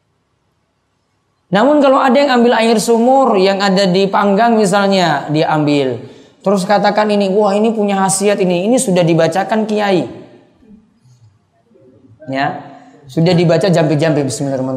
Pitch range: 150-230 Hz